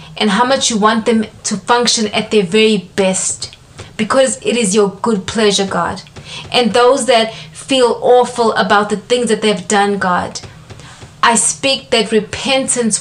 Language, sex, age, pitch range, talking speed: English, female, 20-39, 195-235 Hz, 160 wpm